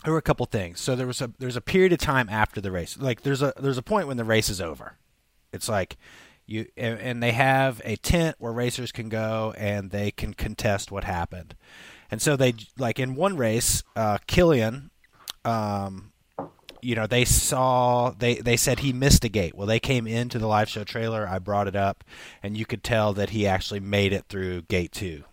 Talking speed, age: 220 wpm, 30-49